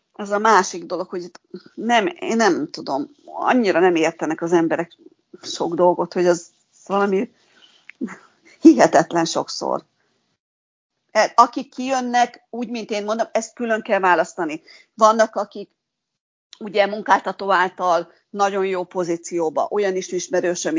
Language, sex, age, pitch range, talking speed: Hungarian, female, 50-69, 170-230 Hz, 120 wpm